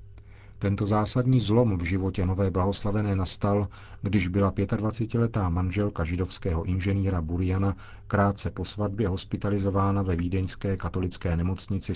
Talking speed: 115 wpm